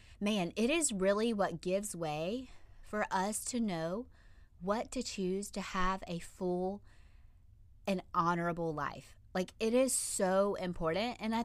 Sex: female